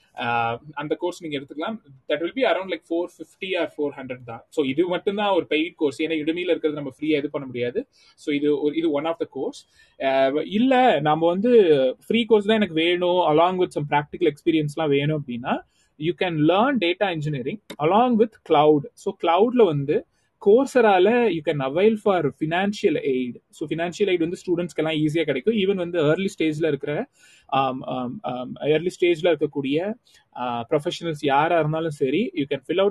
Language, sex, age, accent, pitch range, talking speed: Tamil, male, 20-39, native, 145-180 Hz, 180 wpm